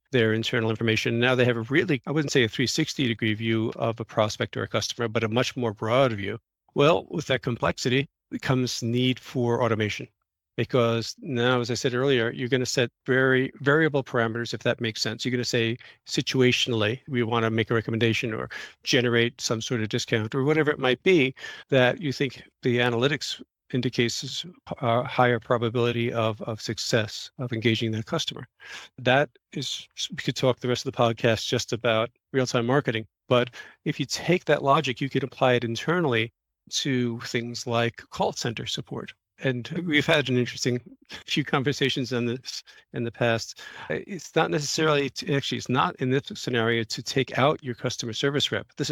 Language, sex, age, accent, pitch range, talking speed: English, male, 50-69, American, 115-135 Hz, 180 wpm